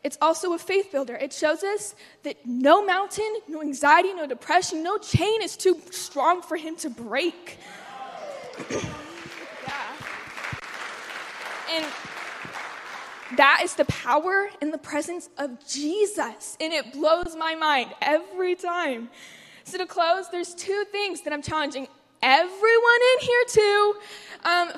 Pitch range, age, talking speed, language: 295-360 Hz, 10-29, 135 wpm, English